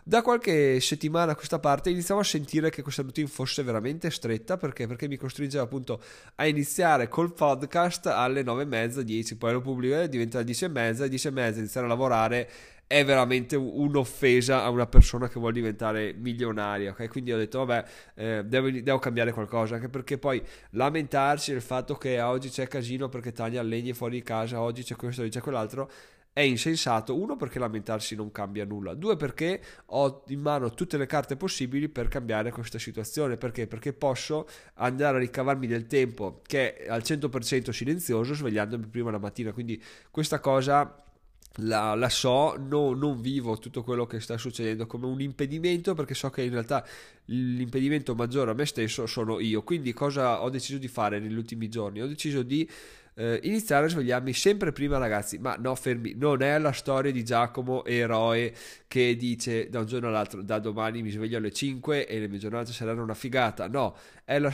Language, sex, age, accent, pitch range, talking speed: Italian, male, 20-39, native, 115-145 Hz, 190 wpm